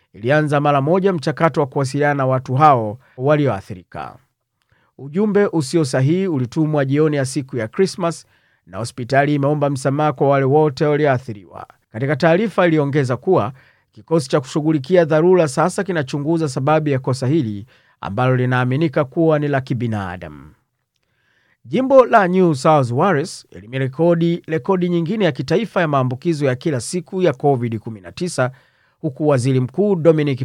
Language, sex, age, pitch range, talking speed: Swahili, male, 40-59, 130-170 Hz, 135 wpm